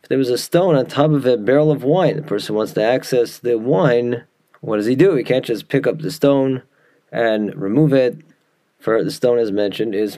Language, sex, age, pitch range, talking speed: English, male, 30-49, 115-150 Hz, 225 wpm